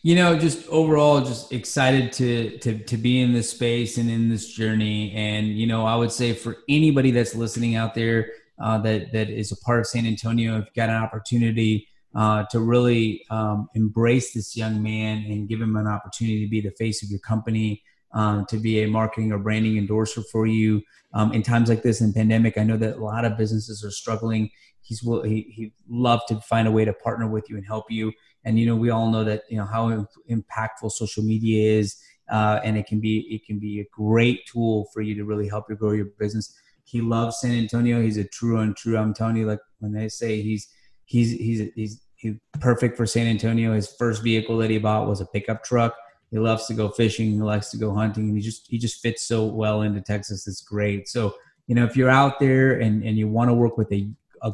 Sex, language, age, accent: male, English, 30-49, American